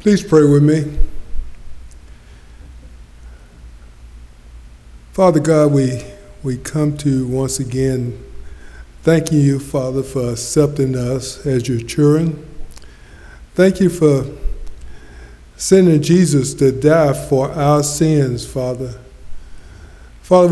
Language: English